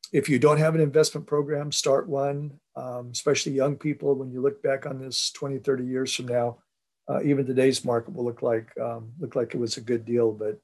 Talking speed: 225 wpm